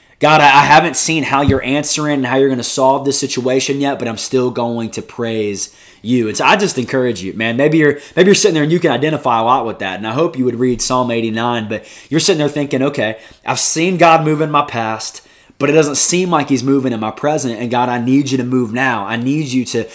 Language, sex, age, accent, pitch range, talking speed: English, male, 20-39, American, 115-145 Hz, 260 wpm